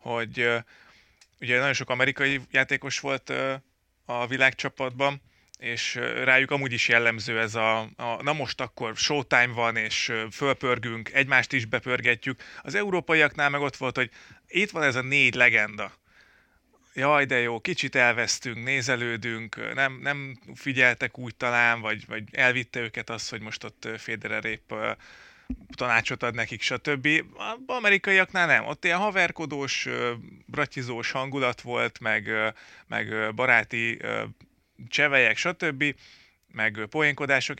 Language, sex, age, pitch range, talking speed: Hungarian, male, 30-49, 115-135 Hz, 125 wpm